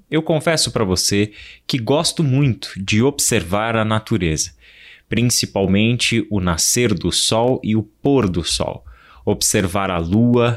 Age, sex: 20-39, male